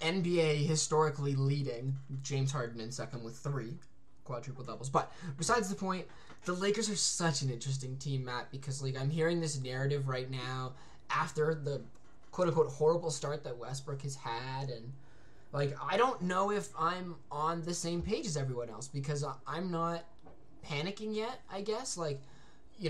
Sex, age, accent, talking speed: male, 10-29, American, 170 wpm